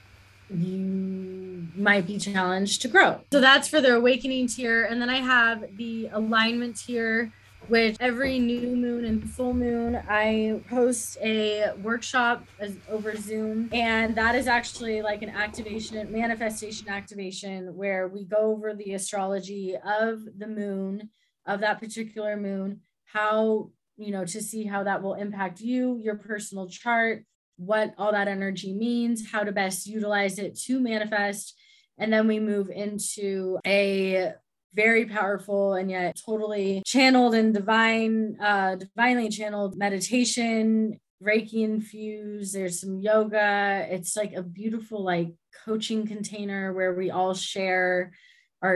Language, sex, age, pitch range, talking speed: English, female, 20-39, 185-220 Hz, 140 wpm